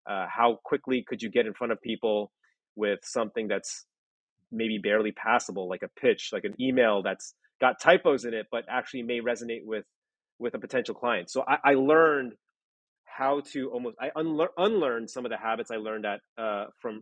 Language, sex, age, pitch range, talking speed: English, male, 30-49, 105-130 Hz, 195 wpm